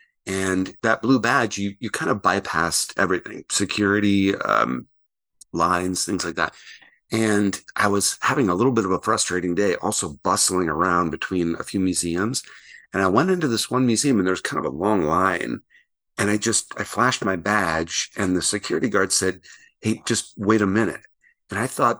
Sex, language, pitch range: male, English, 95-115 Hz